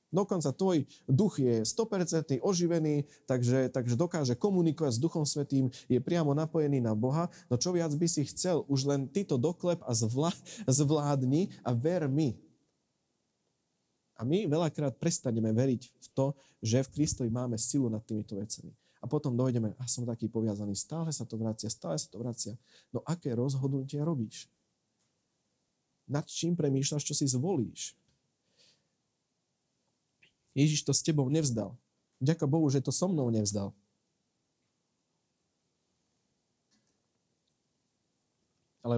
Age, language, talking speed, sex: 40-59, Slovak, 135 wpm, male